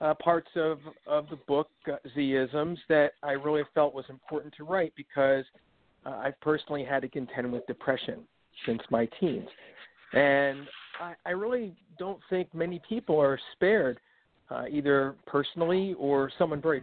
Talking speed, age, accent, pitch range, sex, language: 155 wpm, 50-69, American, 130-165 Hz, male, English